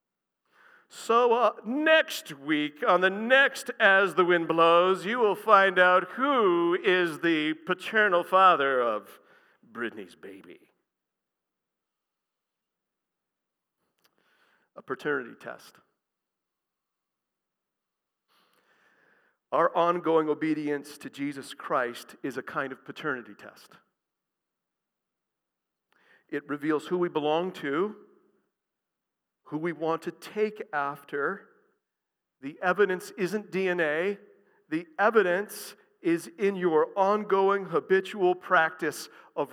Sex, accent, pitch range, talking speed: male, American, 155-210 Hz, 95 wpm